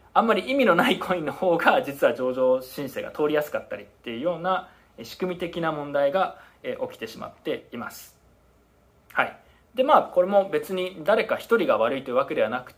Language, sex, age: Japanese, male, 20-39